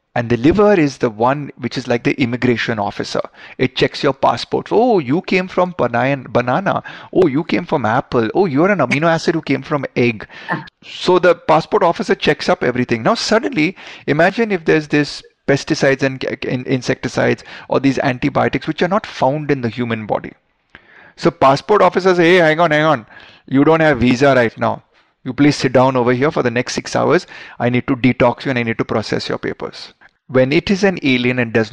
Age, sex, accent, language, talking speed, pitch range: 30-49, male, native, Hindi, 205 wpm, 125-160 Hz